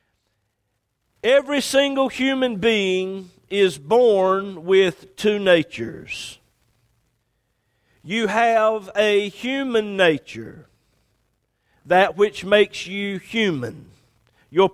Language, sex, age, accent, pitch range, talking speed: English, male, 50-69, American, 140-230 Hz, 80 wpm